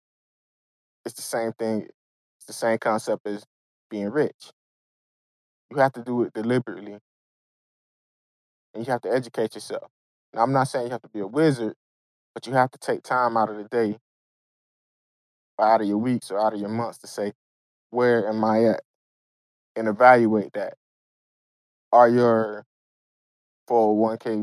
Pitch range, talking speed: 110-125 Hz, 155 wpm